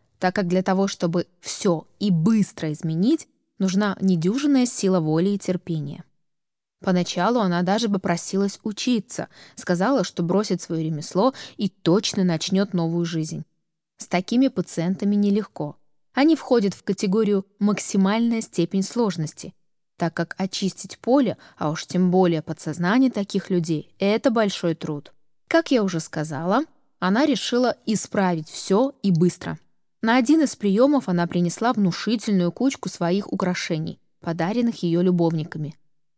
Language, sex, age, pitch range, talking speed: Russian, female, 20-39, 175-225 Hz, 130 wpm